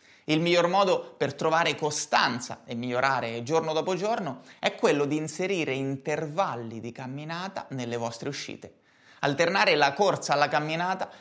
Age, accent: 30-49, native